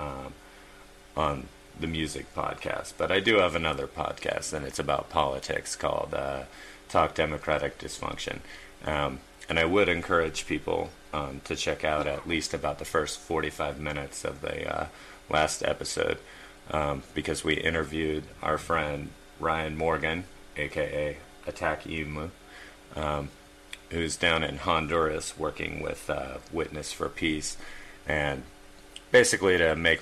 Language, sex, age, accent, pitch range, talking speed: English, male, 30-49, American, 75-80 Hz, 135 wpm